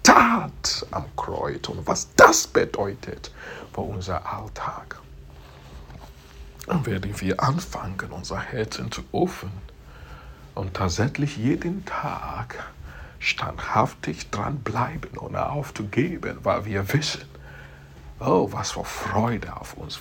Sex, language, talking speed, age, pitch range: male, English, 110 wpm, 60-79, 70-120 Hz